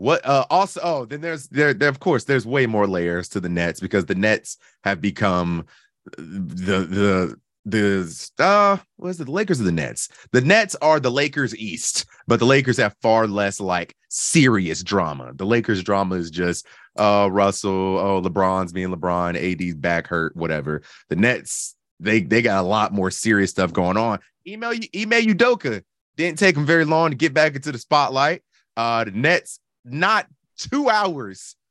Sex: male